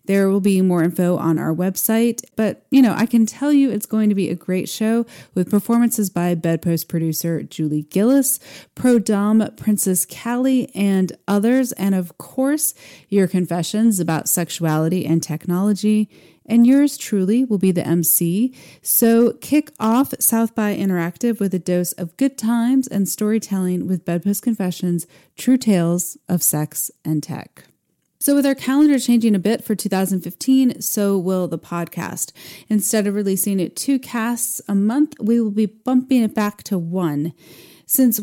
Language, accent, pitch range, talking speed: English, American, 175-225 Hz, 160 wpm